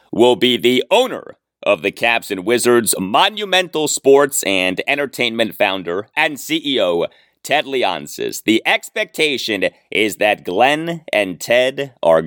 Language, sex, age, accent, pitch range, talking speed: English, male, 30-49, American, 95-140 Hz, 125 wpm